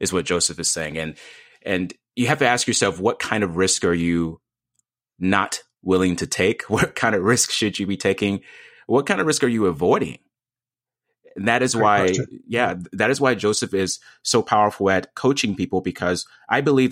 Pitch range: 95-125 Hz